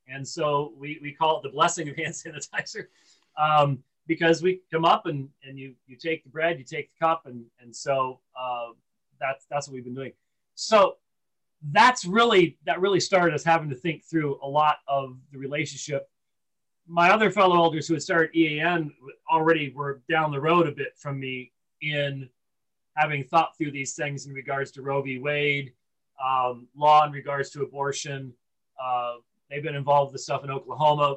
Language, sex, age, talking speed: English, male, 30-49, 185 wpm